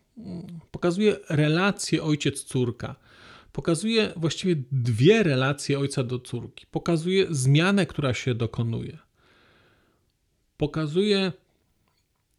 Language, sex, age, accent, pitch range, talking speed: Polish, male, 40-59, native, 130-175 Hz, 75 wpm